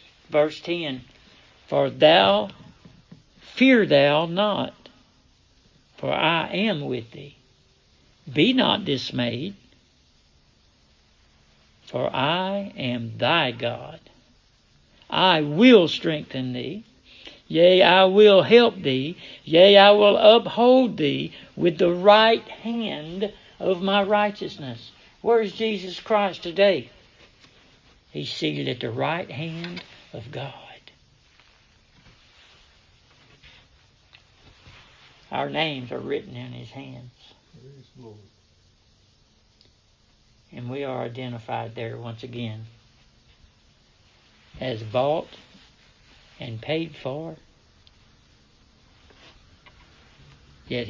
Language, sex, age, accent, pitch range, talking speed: English, male, 60-79, American, 115-175 Hz, 90 wpm